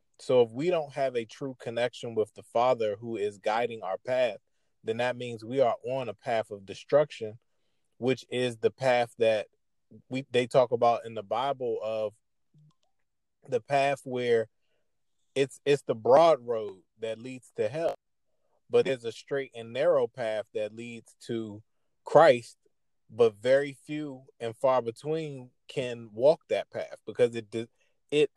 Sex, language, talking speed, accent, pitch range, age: male, English, 160 wpm, American, 115-145 Hz, 20-39